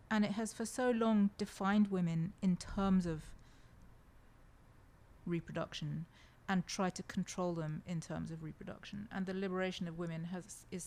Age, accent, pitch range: 30-49, British, 165-195 Hz